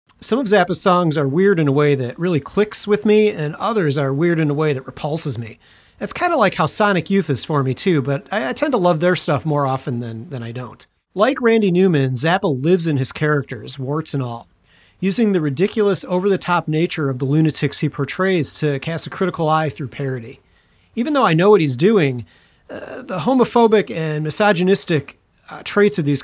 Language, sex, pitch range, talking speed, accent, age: English, male, 135-180 Hz, 215 wpm, American, 40-59